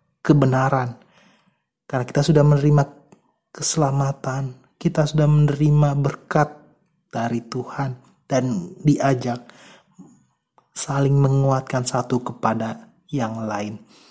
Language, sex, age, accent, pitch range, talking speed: Indonesian, male, 30-49, native, 140-185 Hz, 85 wpm